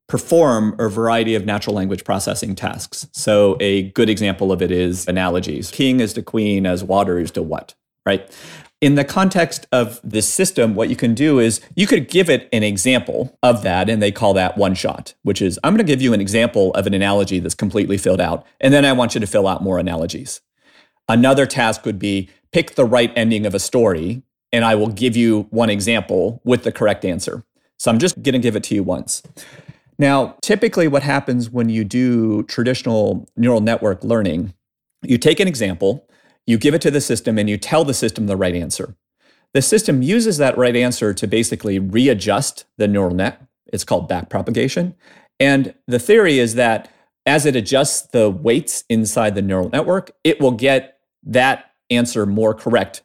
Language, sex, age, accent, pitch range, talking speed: English, male, 40-59, American, 100-130 Hz, 195 wpm